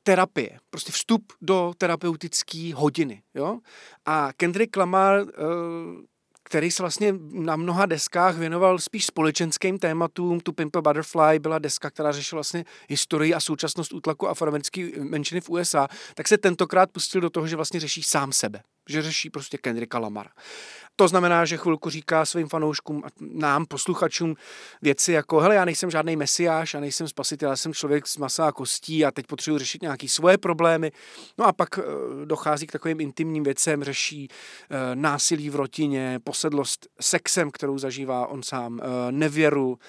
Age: 40-59